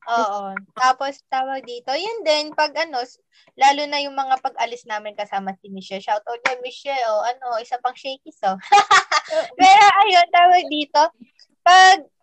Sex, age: female, 20-39